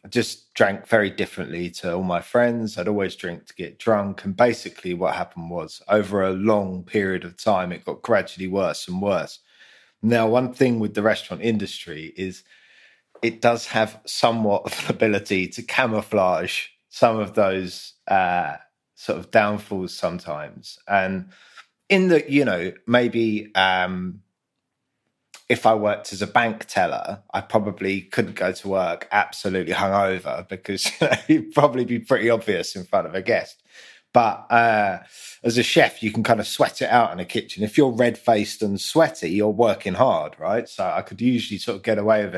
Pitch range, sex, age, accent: 95-115 Hz, male, 20-39, British